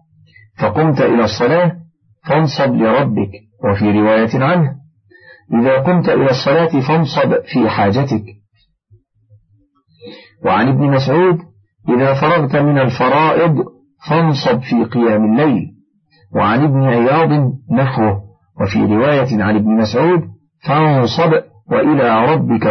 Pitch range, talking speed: 105-150 Hz, 100 wpm